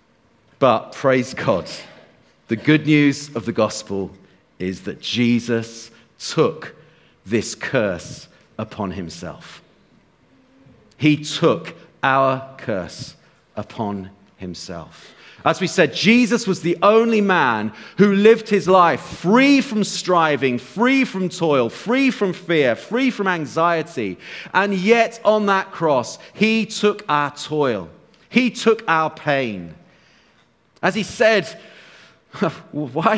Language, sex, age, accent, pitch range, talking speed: English, male, 40-59, British, 120-185 Hz, 115 wpm